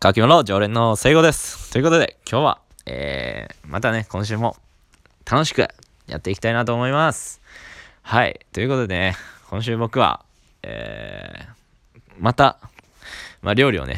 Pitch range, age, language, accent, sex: 85-120 Hz, 20-39, Japanese, native, male